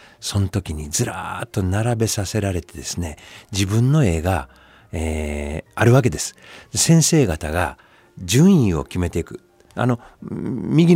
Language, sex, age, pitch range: Japanese, male, 50-69, 90-145 Hz